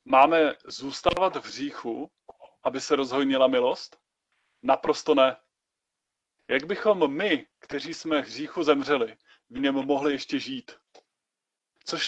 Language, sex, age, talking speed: Czech, male, 30-49, 120 wpm